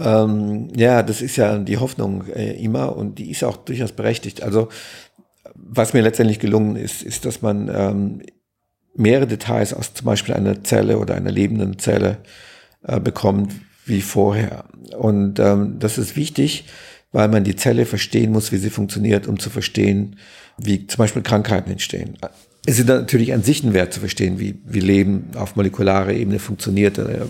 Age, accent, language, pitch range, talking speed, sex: 50-69, German, German, 100-115 Hz, 170 wpm, male